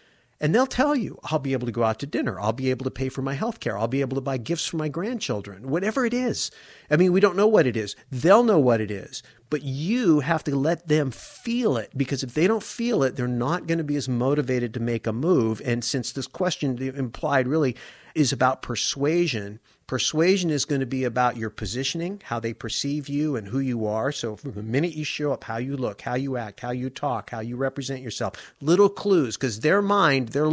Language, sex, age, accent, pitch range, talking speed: English, male, 50-69, American, 125-155 Hz, 240 wpm